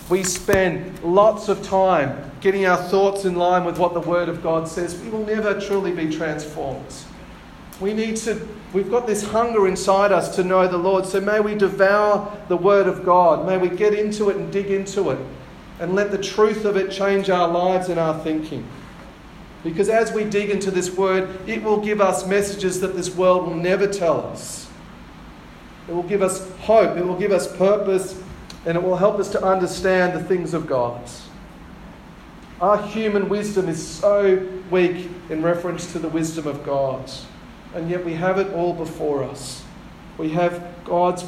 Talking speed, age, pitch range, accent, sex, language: 190 wpm, 40-59, 175-200 Hz, Australian, male, English